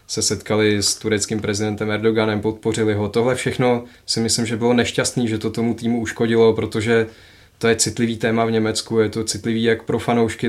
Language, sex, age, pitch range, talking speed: Czech, male, 20-39, 105-115 Hz, 190 wpm